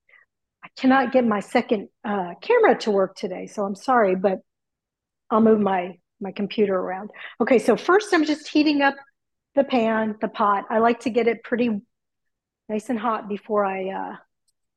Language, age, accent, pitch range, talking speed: English, 40-59, American, 205-255 Hz, 170 wpm